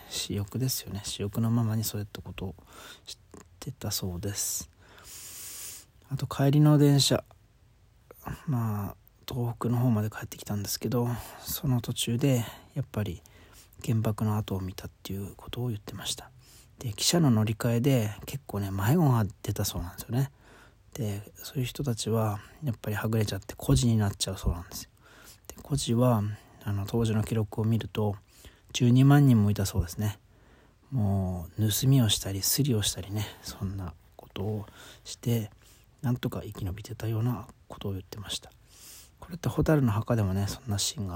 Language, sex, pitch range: Japanese, male, 100-120 Hz